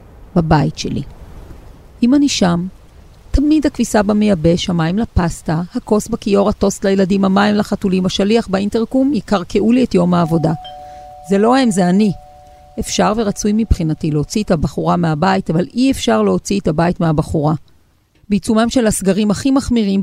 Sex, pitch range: female, 170-220 Hz